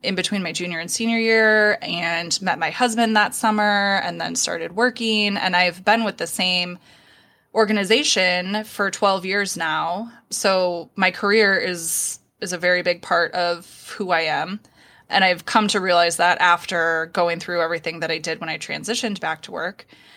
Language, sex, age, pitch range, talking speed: English, female, 20-39, 175-215 Hz, 180 wpm